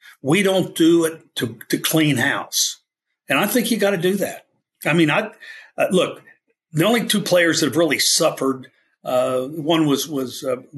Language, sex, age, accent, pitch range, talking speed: English, male, 50-69, American, 135-190 Hz, 185 wpm